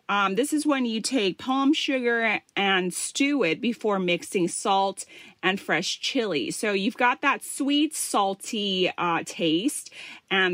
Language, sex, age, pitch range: Thai, female, 30-49, 185-265 Hz